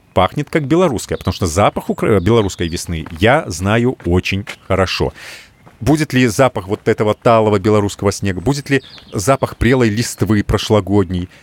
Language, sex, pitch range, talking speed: Russian, male, 95-135 Hz, 140 wpm